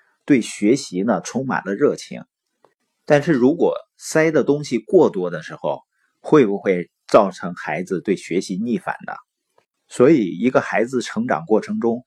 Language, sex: Chinese, male